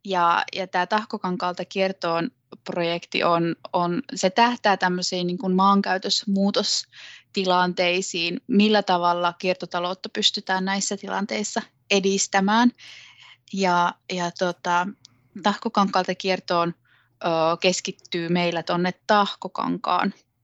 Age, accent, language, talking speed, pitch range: 20-39, native, Finnish, 90 wpm, 180-200 Hz